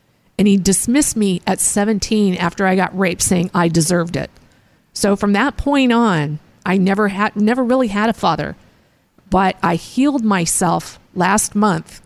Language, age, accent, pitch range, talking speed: English, 50-69, American, 175-215 Hz, 165 wpm